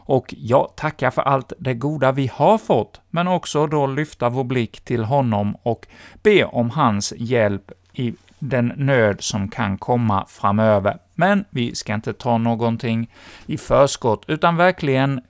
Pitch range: 110-135 Hz